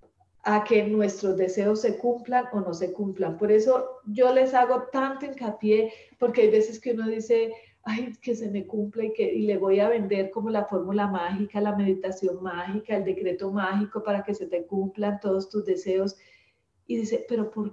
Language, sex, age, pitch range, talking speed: Spanish, female, 40-59, 195-235 Hz, 195 wpm